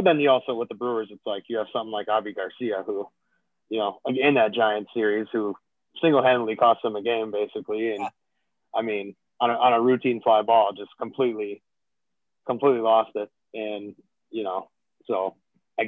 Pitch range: 110-125 Hz